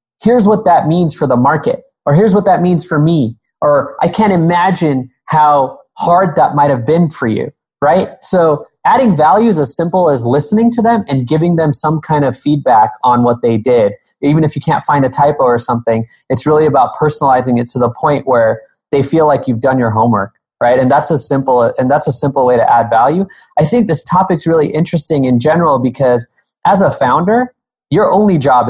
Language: English